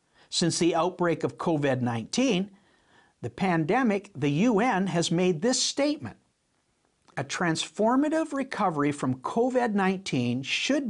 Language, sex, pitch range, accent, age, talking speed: English, male, 145-225 Hz, American, 60-79, 105 wpm